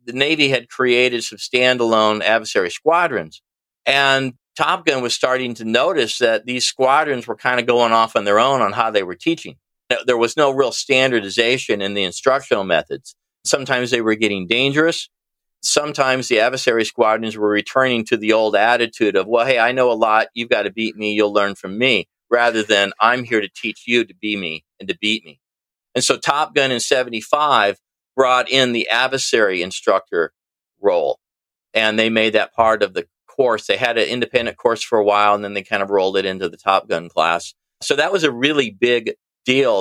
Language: English